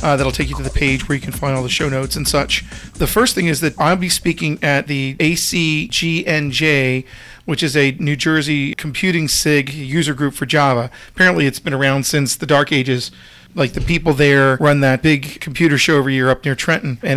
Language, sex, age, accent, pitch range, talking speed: English, male, 40-59, American, 135-155 Hz, 215 wpm